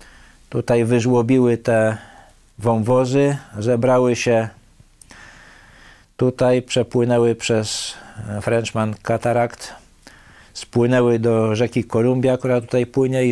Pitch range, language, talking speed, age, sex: 105-120 Hz, Polish, 85 wpm, 50-69, male